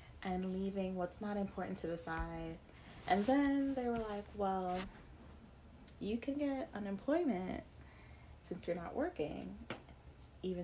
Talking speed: 130 wpm